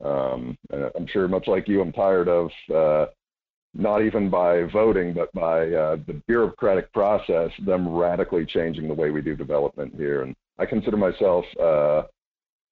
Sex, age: male, 50-69